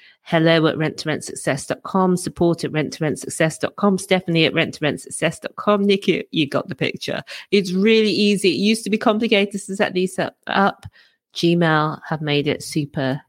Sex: female